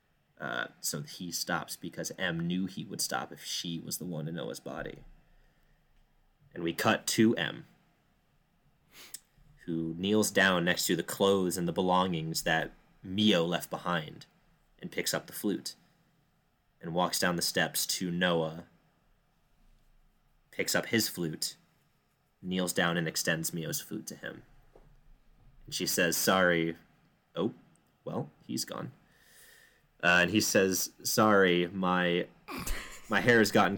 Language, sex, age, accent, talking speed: English, male, 30-49, American, 140 wpm